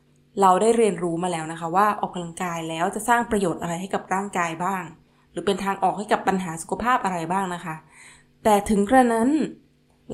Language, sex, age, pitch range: Thai, female, 20-39, 170-215 Hz